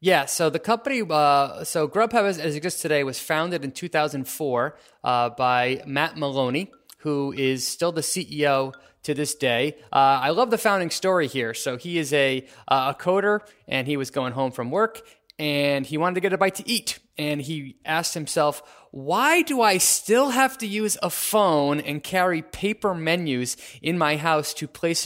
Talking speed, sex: 190 wpm, male